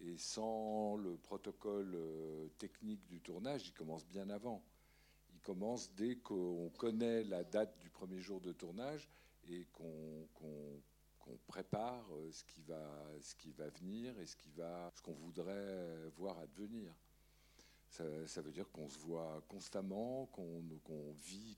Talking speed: 155 wpm